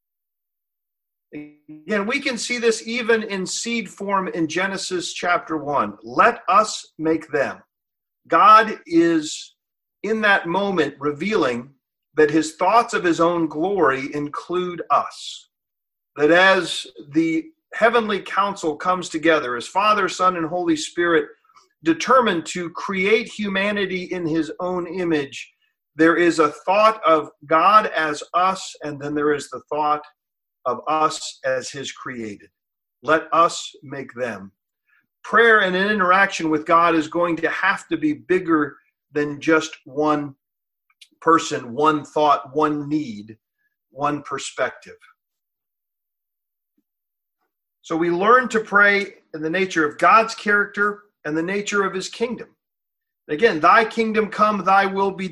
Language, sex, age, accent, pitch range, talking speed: English, male, 50-69, American, 155-215 Hz, 135 wpm